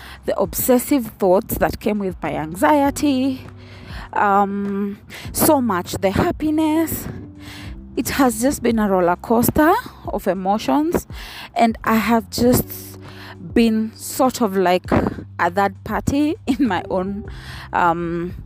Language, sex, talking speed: English, female, 120 wpm